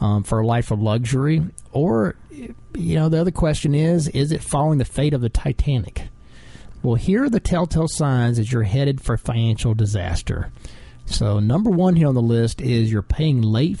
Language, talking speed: English, 190 wpm